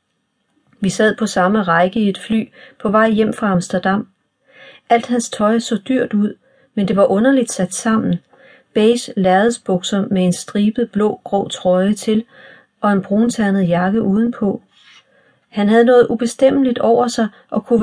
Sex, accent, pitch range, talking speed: female, native, 185-230 Hz, 155 wpm